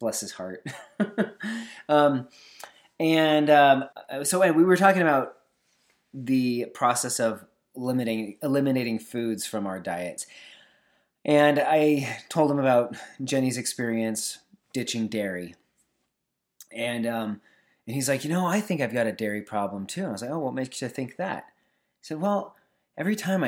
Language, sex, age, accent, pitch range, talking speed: English, male, 30-49, American, 120-160 Hz, 150 wpm